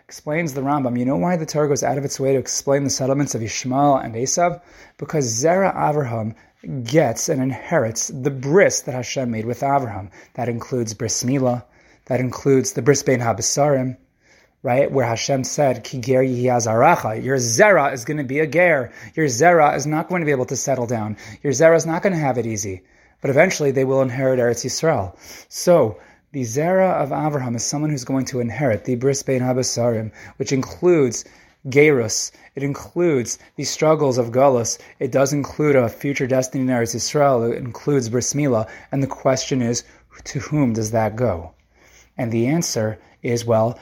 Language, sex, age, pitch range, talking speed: English, male, 30-49, 120-145 Hz, 180 wpm